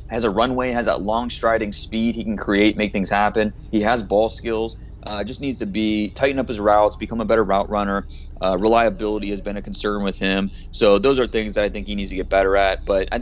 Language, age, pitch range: English, 20-39, 95-115 Hz